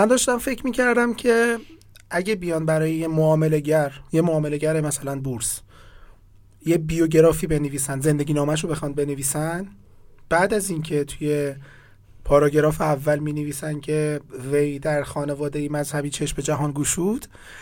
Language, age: Persian, 30-49